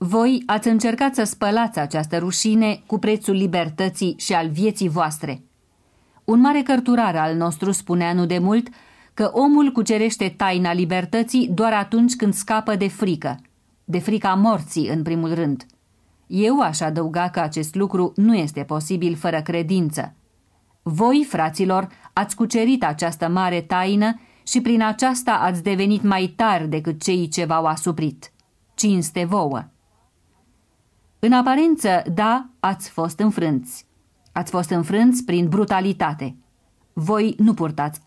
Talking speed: 135 wpm